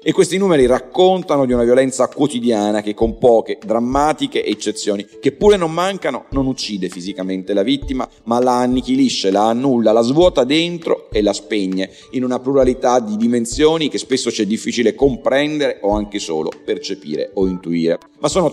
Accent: native